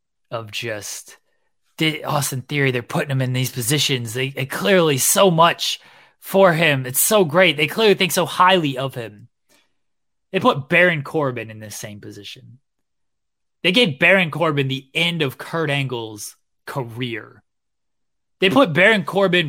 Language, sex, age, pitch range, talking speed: English, male, 20-39, 125-175 Hz, 150 wpm